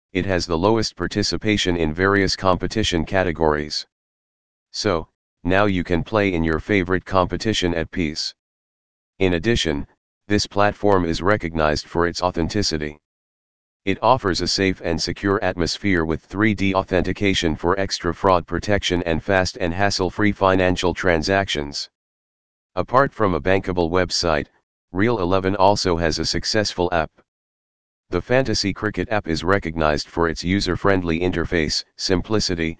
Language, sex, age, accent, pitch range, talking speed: English, male, 40-59, American, 85-100 Hz, 130 wpm